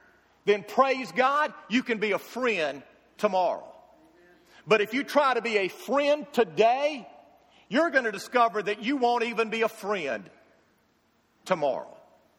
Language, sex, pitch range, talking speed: English, male, 215-300 Hz, 145 wpm